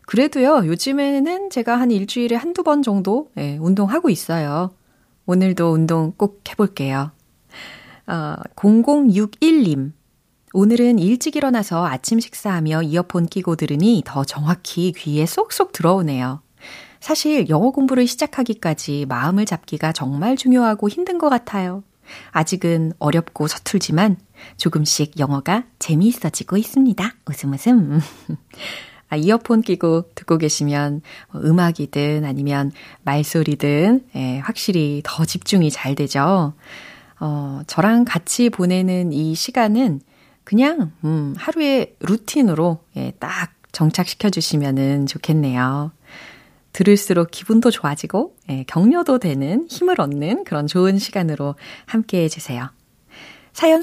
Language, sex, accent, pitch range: Korean, female, native, 150-230 Hz